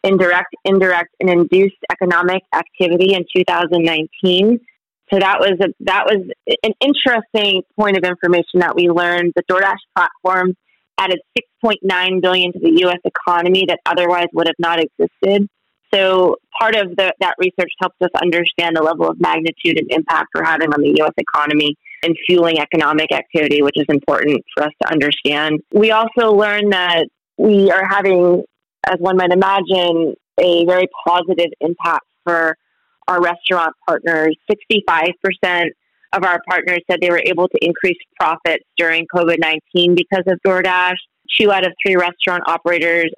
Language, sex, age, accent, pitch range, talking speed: English, female, 30-49, American, 170-190 Hz, 155 wpm